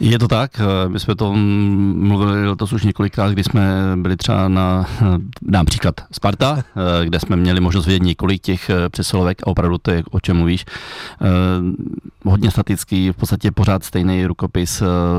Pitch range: 90-110 Hz